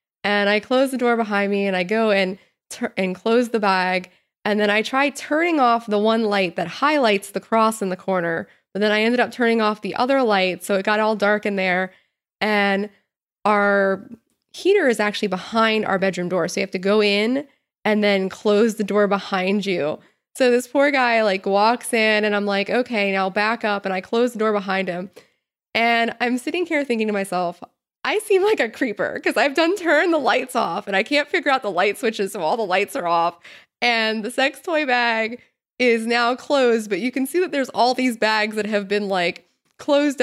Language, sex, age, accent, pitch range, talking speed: English, female, 20-39, American, 195-245 Hz, 220 wpm